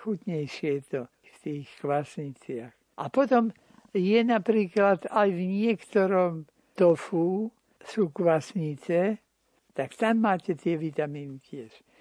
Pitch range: 155-200 Hz